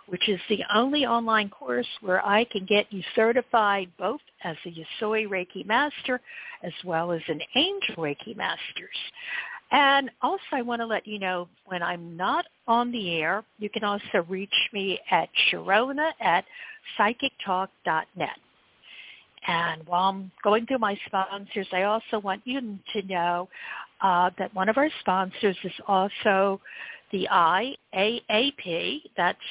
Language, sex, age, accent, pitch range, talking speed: English, female, 60-79, American, 185-245 Hz, 145 wpm